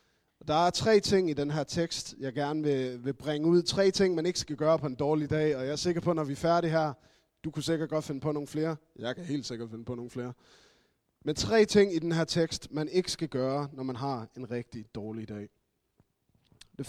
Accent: native